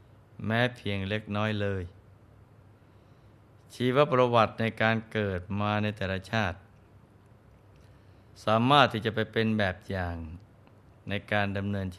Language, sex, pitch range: Thai, male, 100-115 Hz